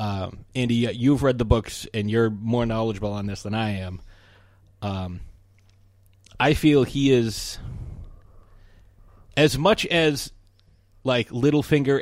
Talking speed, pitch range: 125 wpm, 95-130 Hz